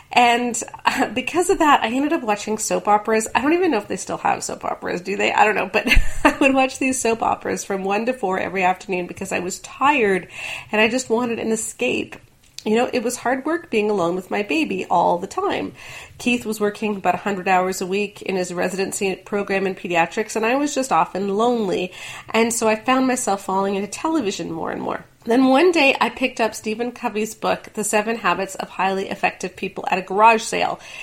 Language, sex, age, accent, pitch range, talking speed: English, female, 30-49, American, 195-255 Hz, 220 wpm